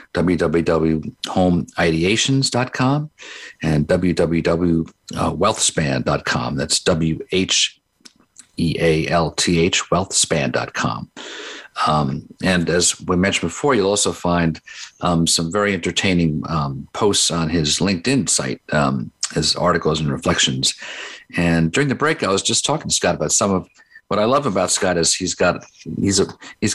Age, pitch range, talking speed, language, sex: 50-69, 80-105 Hz, 120 wpm, English, male